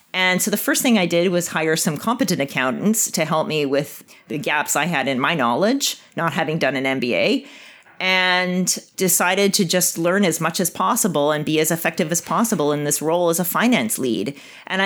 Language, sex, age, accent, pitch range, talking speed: English, female, 30-49, American, 160-205 Hz, 205 wpm